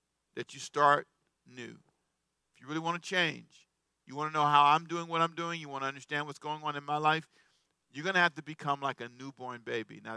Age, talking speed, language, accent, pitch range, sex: 50-69, 240 wpm, English, American, 135-170 Hz, male